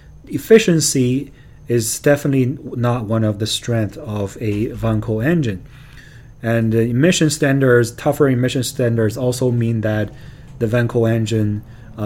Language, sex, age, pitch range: Chinese, male, 30-49, 115-145 Hz